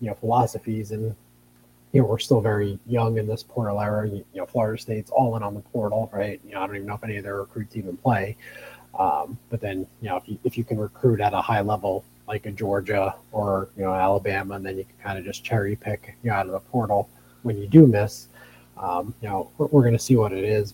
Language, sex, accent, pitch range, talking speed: English, male, American, 95-115 Hz, 250 wpm